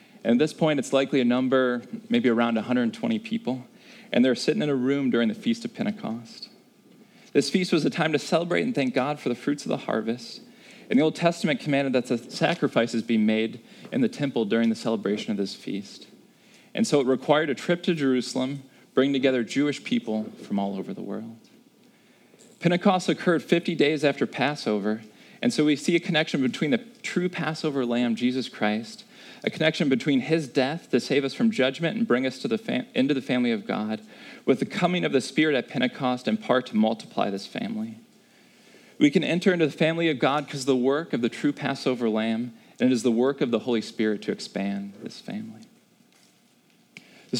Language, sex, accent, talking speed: English, male, American, 205 wpm